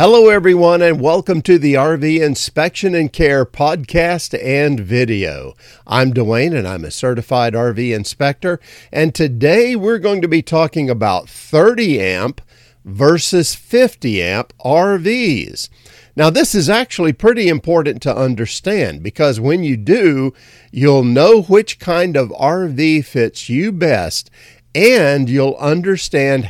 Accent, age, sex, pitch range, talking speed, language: American, 50-69, male, 120-180 Hz, 135 wpm, English